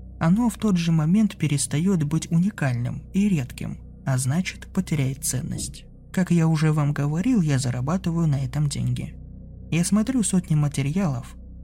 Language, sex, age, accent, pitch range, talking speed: Russian, male, 20-39, native, 135-175 Hz, 145 wpm